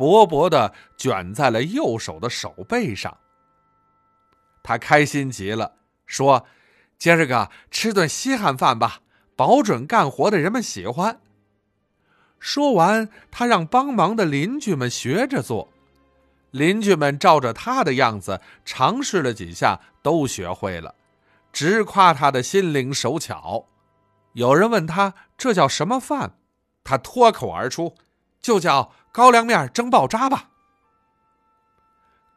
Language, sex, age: Chinese, male, 50-69